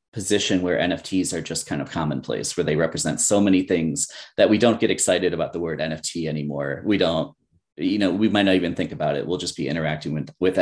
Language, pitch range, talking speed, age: English, 90-110 Hz, 230 wpm, 30-49